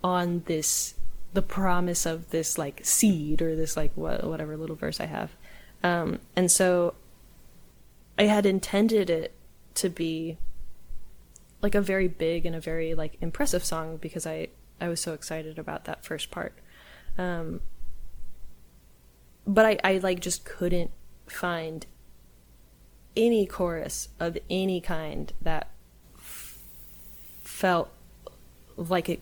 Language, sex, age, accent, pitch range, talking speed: English, female, 20-39, American, 155-180 Hz, 125 wpm